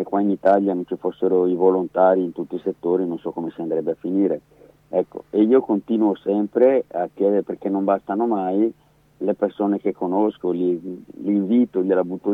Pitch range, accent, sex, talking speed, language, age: 95-105 Hz, native, male, 190 wpm, Italian, 50-69